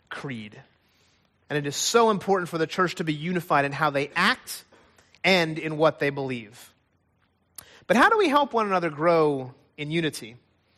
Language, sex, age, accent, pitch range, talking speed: English, male, 30-49, American, 140-210 Hz, 175 wpm